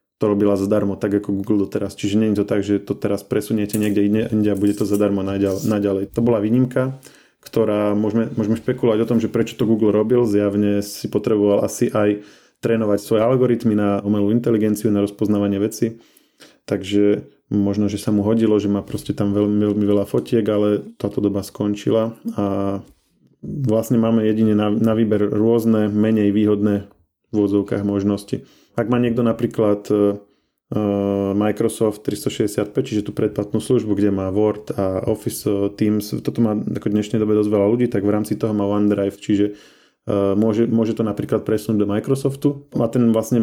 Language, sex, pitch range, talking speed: Slovak, male, 100-115 Hz, 170 wpm